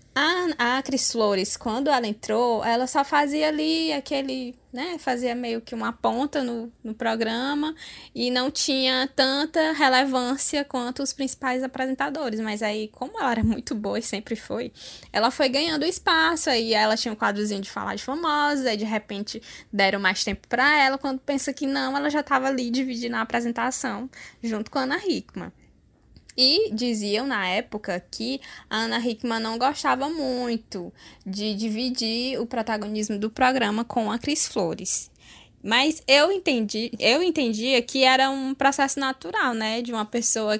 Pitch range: 225-275 Hz